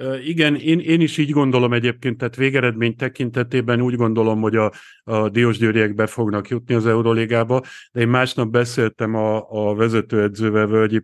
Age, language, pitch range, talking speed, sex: 50-69, Hungarian, 105-120 Hz, 160 wpm, male